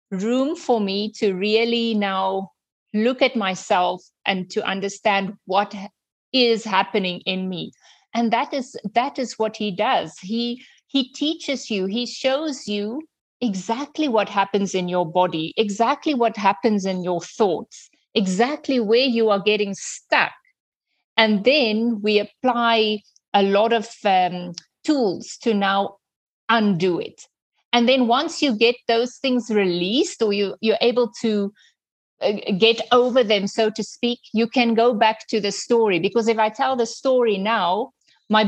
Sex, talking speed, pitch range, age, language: female, 150 wpm, 205-250 Hz, 50-69, English